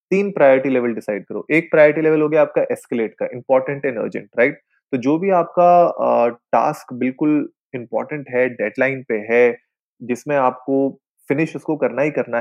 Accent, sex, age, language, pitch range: native, male, 20-39, Hindi, 125-165 Hz